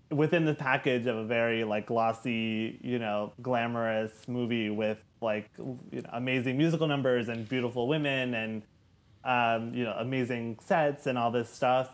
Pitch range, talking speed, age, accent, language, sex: 110-135 Hz, 150 wpm, 20-39, American, English, male